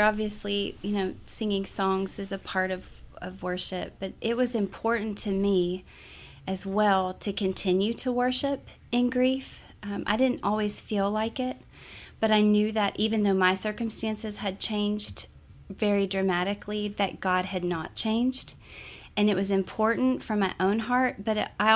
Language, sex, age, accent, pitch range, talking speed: English, female, 30-49, American, 185-215 Hz, 165 wpm